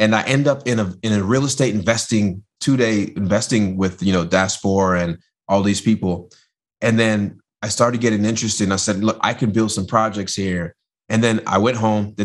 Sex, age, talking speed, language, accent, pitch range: male, 30-49, 210 wpm, English, American, 95-115 Hz